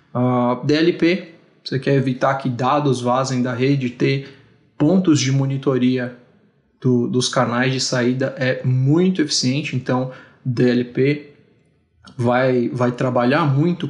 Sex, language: male, Portuguese